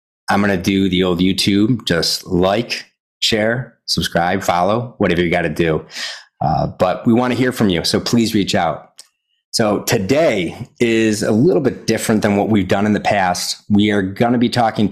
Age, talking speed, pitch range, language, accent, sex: 30-49, 180 wpm, 90-115 Hz, English, American, male